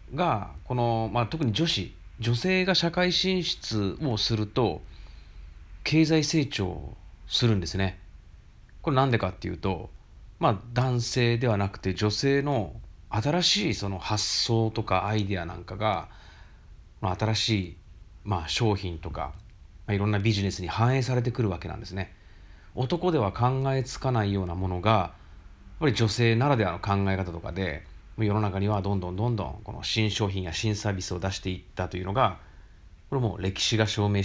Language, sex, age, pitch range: Japanese, male, 40-59, 90-115 Hz